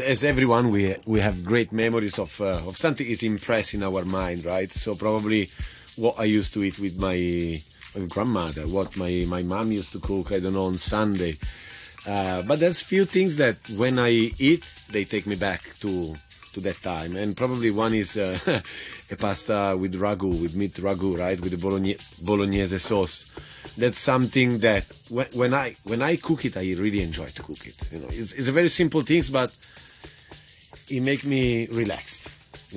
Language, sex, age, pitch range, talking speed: English, male, 30-49, 90-115 Hz, 190 wpm